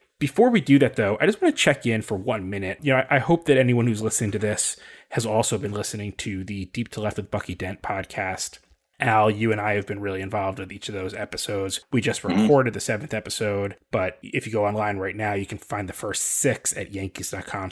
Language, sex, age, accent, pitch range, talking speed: English, male, 20-39, American, 100-130 Hz, 245 wpm